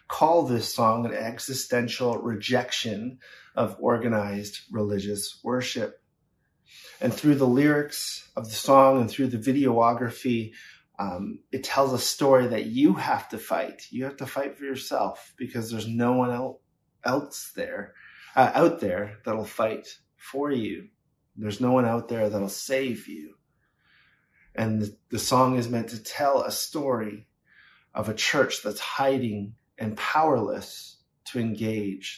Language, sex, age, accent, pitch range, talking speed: English, male, 30-49, American, 110-130 Hz, 145 wpm